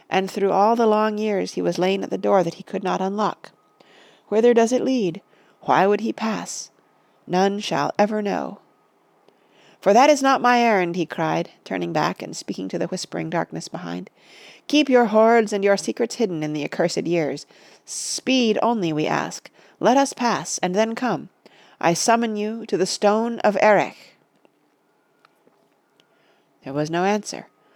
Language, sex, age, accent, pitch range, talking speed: English, female, 40-59, American, 170-220 Hz, 170 wpm